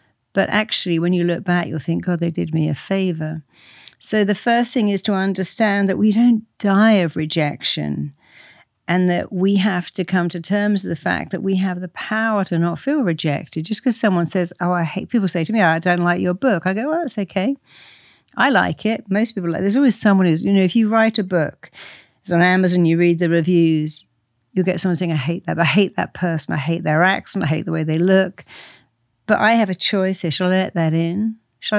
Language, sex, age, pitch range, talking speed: English, female, 50-69, 165-200 Hz, 240 wpm